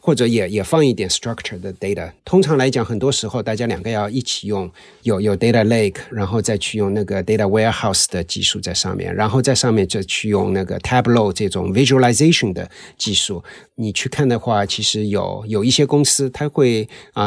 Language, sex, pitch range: Chinese, male, 100-125 Hz